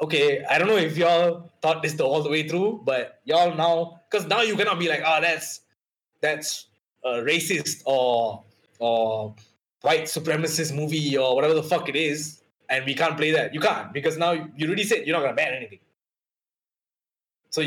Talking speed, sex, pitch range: 185 wpm, male, 115-165 Hz